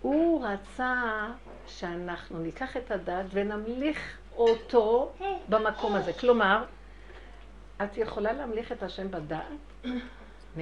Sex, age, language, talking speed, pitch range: female, 60-79, Hebrew, 100 wpm, 200-265 Hz